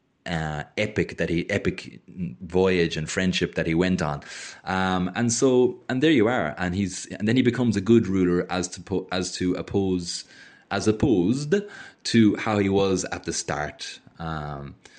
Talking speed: 170 wpm